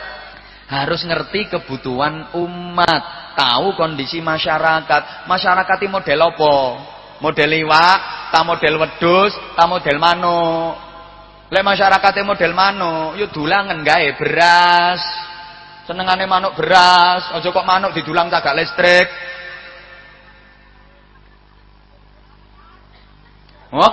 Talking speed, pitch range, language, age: 95 wpm, 160-205 Hz, English, 30-49